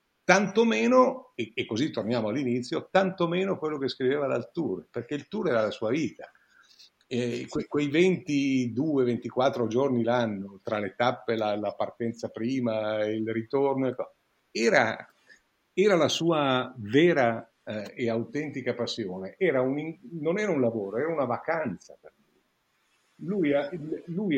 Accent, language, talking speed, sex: native, Italian, 140 wpm, male